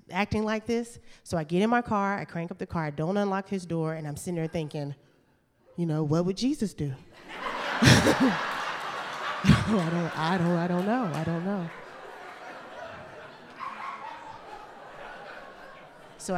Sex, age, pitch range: female, 30-49, 160-225 Hz